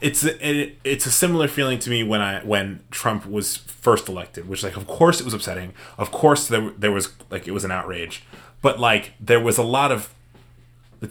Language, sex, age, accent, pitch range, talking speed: English, male, 30-49, American, 100-120 Hz, 220 wpm